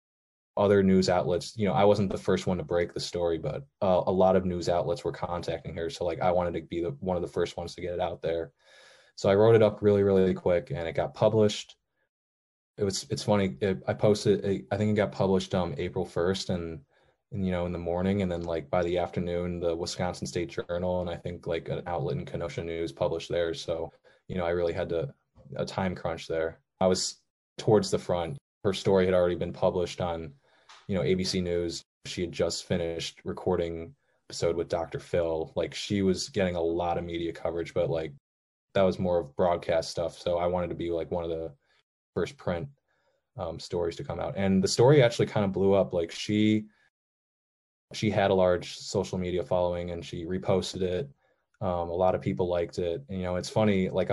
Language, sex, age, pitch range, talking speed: English, male, 20-39, 85-95 Hz, 220 wpm